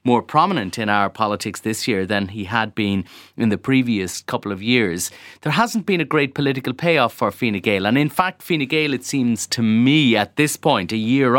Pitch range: 115-150 Hz